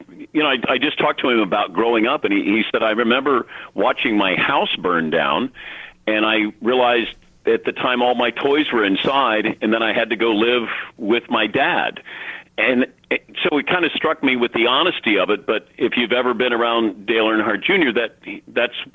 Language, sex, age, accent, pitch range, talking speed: English, male, 50-69, American, 115-130 Hz, 210 wpm